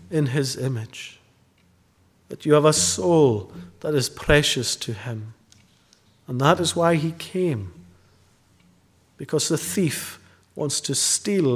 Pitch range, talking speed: 100-150 Hz, 130 wpm